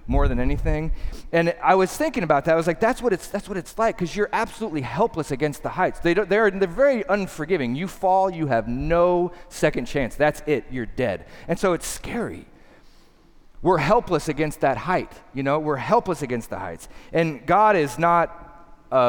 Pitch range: 130-180 Hz